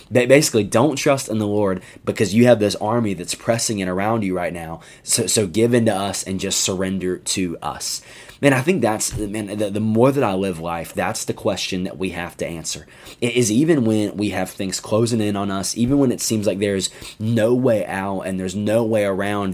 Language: English